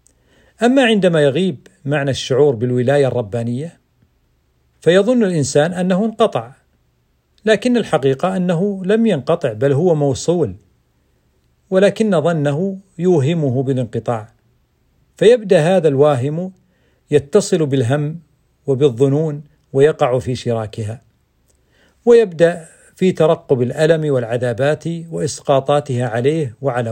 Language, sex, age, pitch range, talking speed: Arabic, male, 50-69, 120-160 Hz, 90 wpm